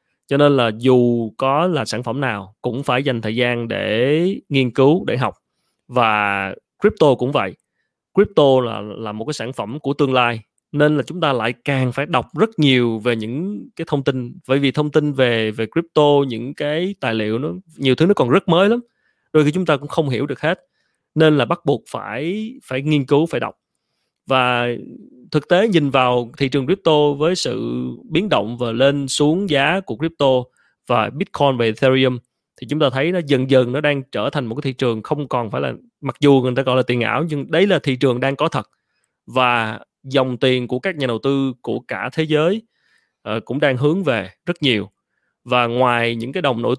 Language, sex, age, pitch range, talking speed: Vietnamese, male, 20-39, 125-155 Hz, 215 wpm